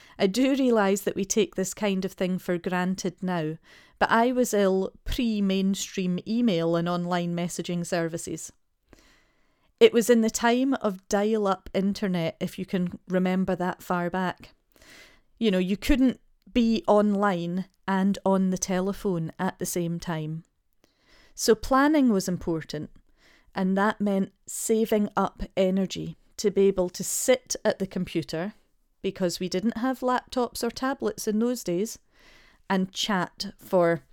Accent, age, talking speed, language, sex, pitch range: British, 40-59, 145 wpm, English, female, 180-220 Hz